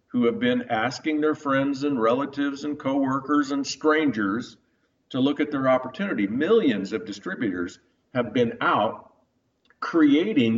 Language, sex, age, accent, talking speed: English, male, 50-69, American, 135 wpm